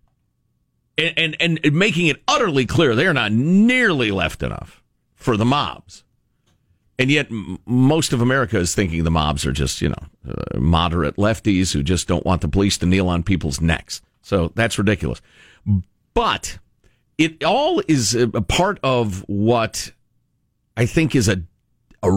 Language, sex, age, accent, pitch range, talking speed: English, male, 50-69, American, 95-135 Hz, 160 wpm